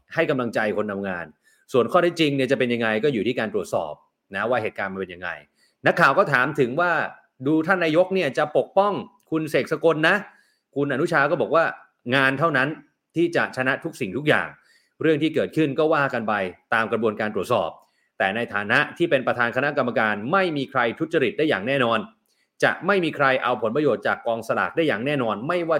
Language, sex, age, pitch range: Thai, male, 30-49, 120-170 Hz